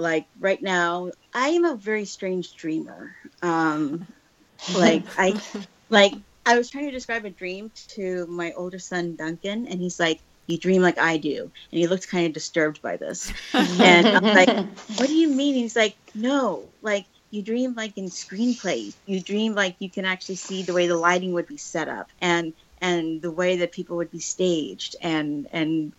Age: 30-49